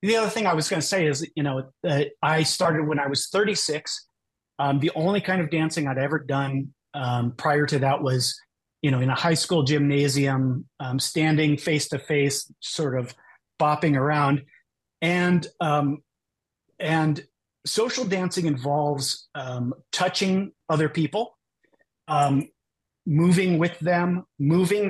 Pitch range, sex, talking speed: 140-180 Hz, male, 150 wpm